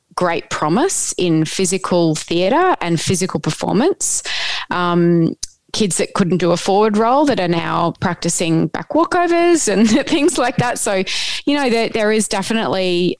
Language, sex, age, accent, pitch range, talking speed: English, female, 20-39, Australian, 170-215 Hz, 150 wpm